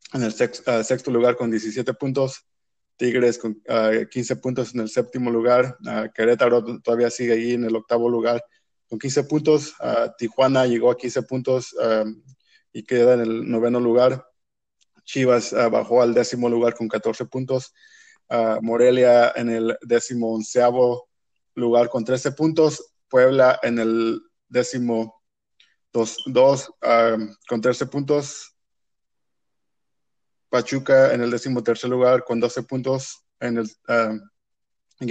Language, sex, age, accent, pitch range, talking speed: Spanish, male, 20-39, Mexican, 115-130 Hz, 140 wpm